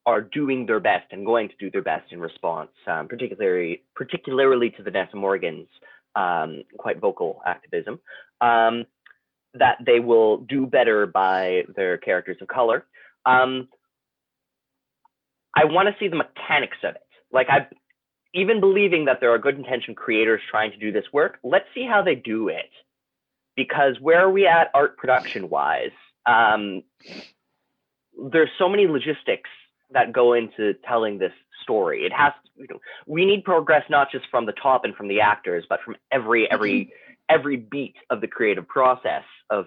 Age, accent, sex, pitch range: 30-49, American, male, 120-200 Hz